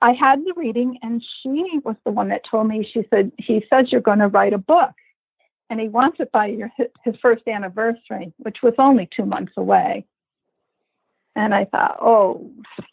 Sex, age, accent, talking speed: female, 50-69, American, 190 wpm